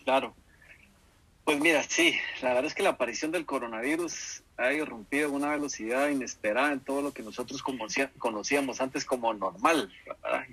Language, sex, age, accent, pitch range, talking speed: Spanish, male, 40-59, Mexican, 105-140 Hz, 160 wpm